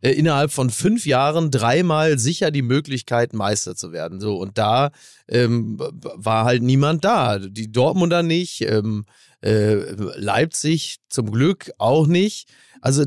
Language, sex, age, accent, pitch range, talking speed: German, male, 30-49, German, 120-160 Hz, 140 wpm